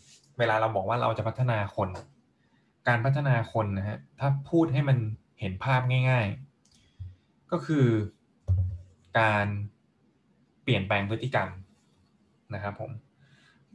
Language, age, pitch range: Thai, 20-39, 100-130 Hz